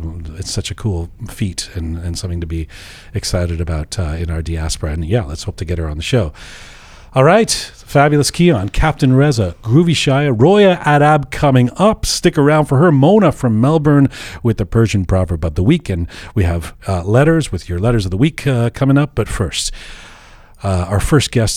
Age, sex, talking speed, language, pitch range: 40-59, male, 200 wpm, English, 95-135 Hz